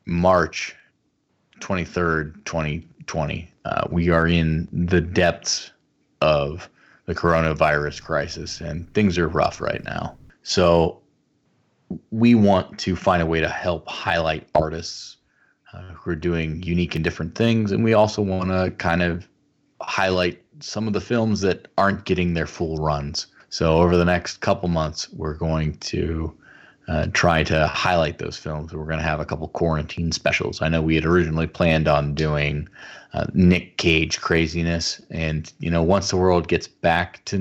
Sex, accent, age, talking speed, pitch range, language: male, American, 30-49, 160 wpm, 80-90 Hz, English